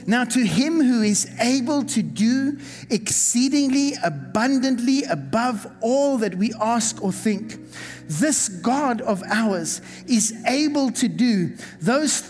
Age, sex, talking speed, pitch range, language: 50-69, male, 125 wpm, 235-280 Hz, English